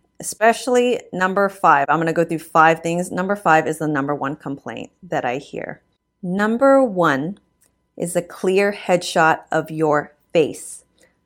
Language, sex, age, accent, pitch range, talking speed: English, female, 30-49, American, 155-195 Hz, 150 wpm